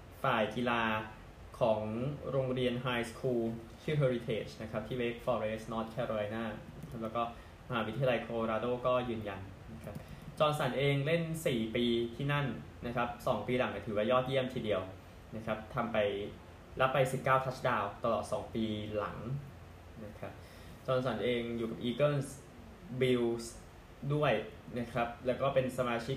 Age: 20-39